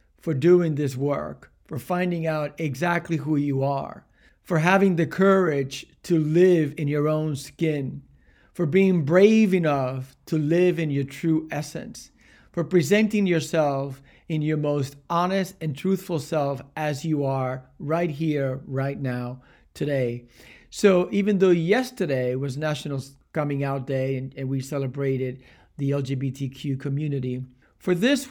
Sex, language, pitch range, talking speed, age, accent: male, English, 135-175 Hz, 140 wpm, 40-59, American